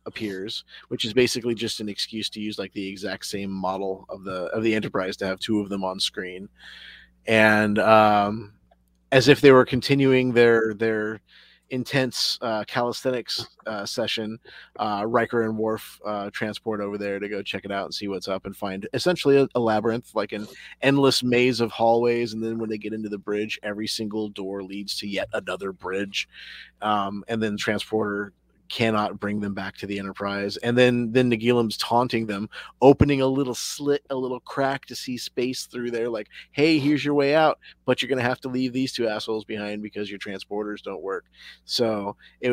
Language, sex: English, male